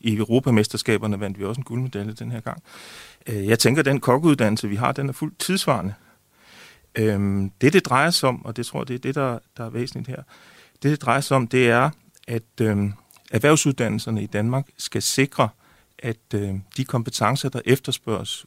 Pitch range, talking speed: 110-135 Hz, 180 wpm